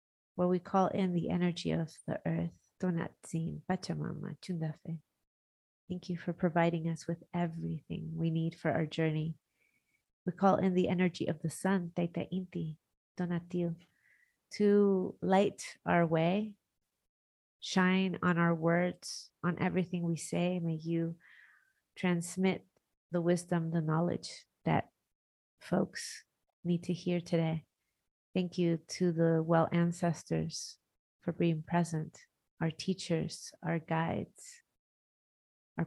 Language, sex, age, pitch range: English, female, 30-49, 160-180 Hz